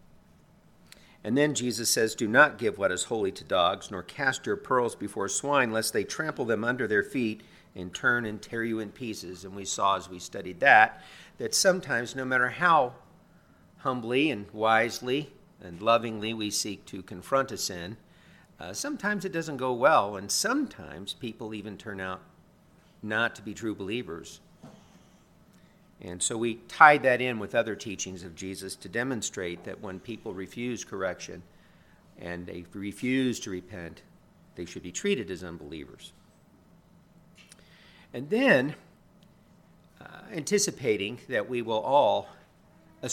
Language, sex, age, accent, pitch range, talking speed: English, male, 50-69, American, 100-130 Hz, 155 wpm